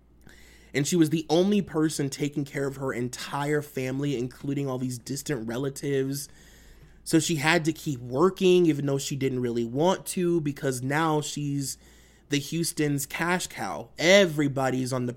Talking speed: 160 wpm